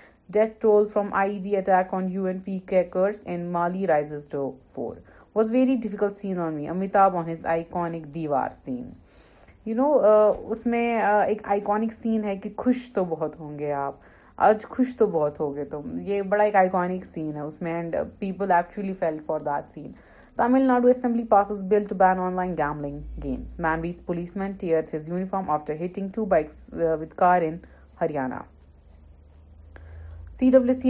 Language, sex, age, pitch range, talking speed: Urdu, female, 30-49, 155-210 Hz, 165 wpm